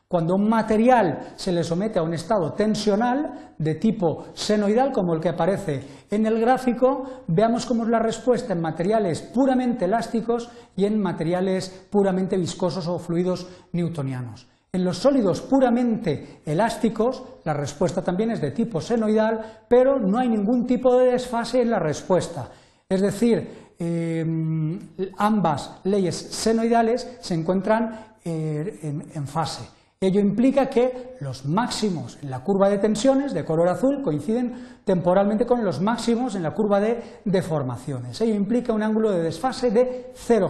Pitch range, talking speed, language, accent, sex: 170-240 Hz, 145 wpm, Spanish, Spanish, male